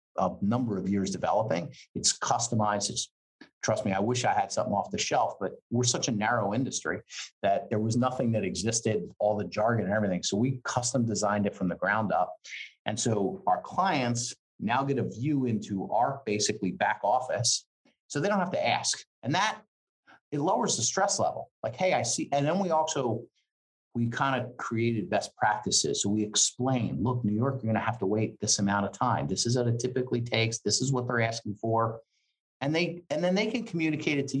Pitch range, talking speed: 105-135 Hz, 210 wpm